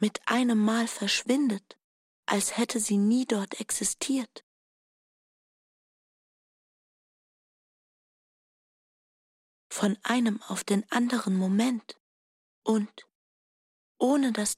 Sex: female